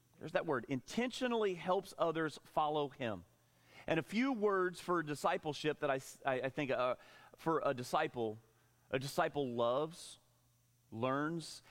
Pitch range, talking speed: 120-180 Hz, 140 wpm